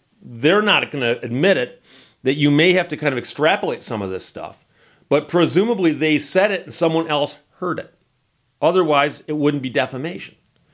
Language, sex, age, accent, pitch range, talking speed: English, male, 40-59, American, 125-160 Hz, 185 wpm